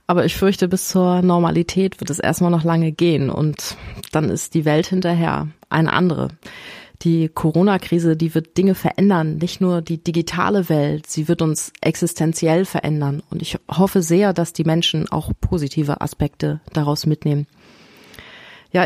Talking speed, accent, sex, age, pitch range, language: 155 wpm, German, female, 30-49, 160-190 Hz, German